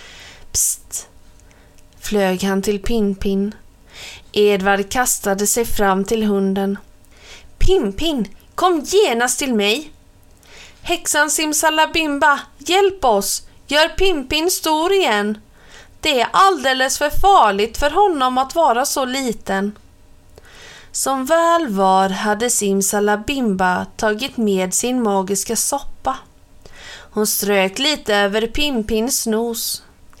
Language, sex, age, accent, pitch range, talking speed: Swedish, female, 30-49, native, 200-275 Hz, 100 wpm